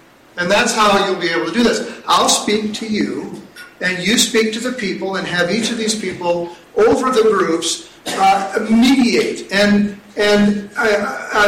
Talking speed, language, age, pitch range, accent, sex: 170 wpm, English, 50-69, 185-240 Hz, American, male